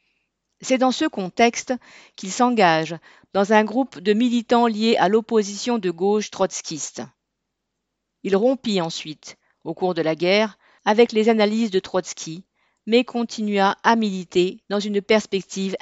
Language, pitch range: French, 180-225 Hz